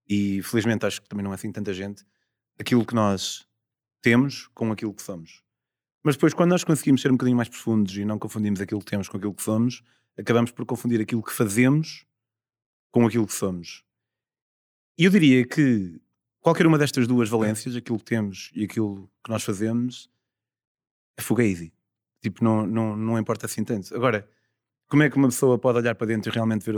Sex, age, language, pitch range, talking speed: male, 30-49, Portuguese, 100-125 Hz, 195 wpm